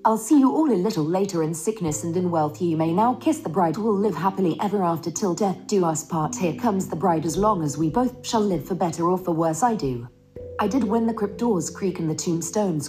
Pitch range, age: 155-205 Hz, 40-59